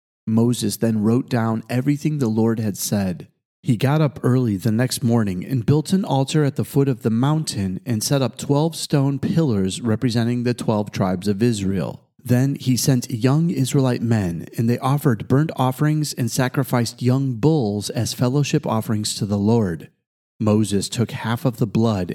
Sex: male